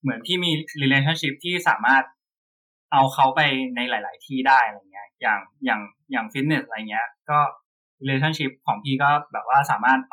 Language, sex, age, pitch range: Thai, male, 20-39, 130-170 Hz